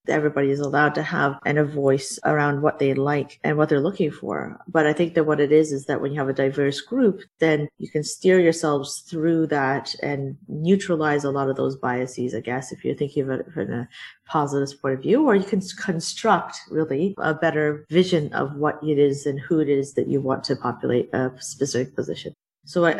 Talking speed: 220 wpm